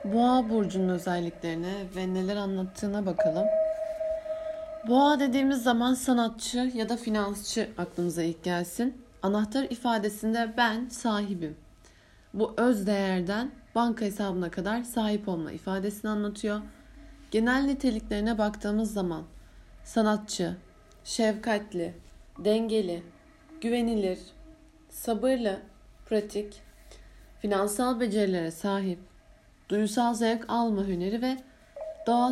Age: 30-49